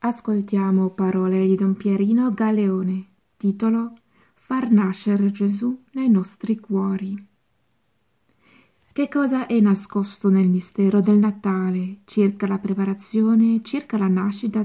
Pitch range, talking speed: 195-220 Hz, 115 wpm